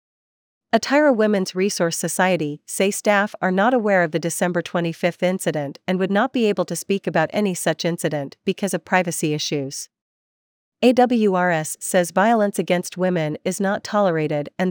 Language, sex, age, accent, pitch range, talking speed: English, female, 40-59, American, 170-195 Hz, 155 wpm